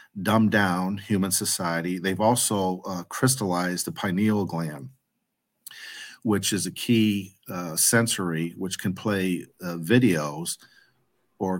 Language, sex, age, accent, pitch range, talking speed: English, male, 50-69, American, 90-105 Hz, 120 wpm